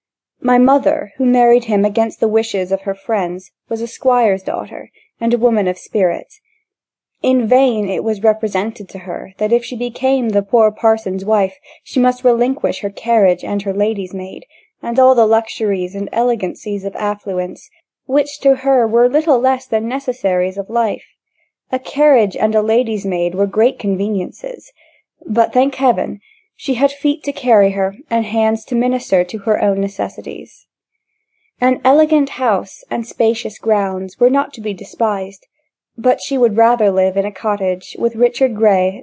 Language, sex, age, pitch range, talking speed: English, female, 20-39, 200-255 Hz, 170 wpm